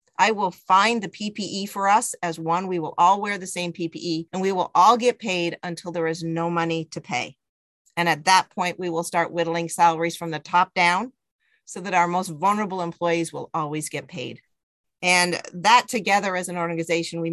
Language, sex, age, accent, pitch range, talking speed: English, female, 40-59, American, 170-195 Hz, 205 wpm